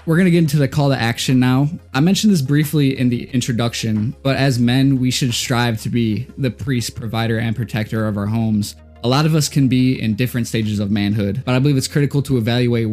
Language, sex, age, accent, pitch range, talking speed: English, male, 20-39, American, 110-130 Hz, 230 wpm